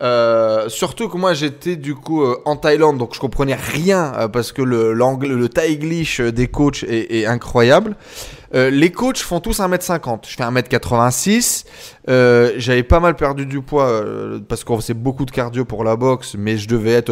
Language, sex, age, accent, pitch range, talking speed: French, male, 20-39, French, 125-175 Hz, 195 wpm